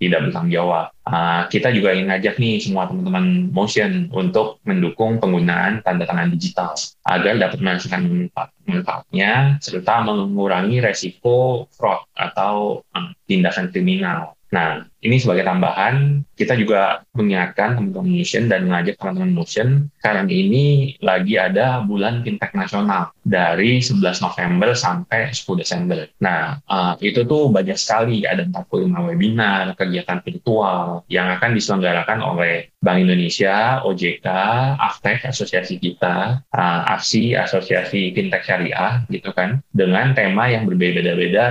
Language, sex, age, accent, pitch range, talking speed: Indonesian, male, 20-39, native, 95-140 Hz, 130 wpm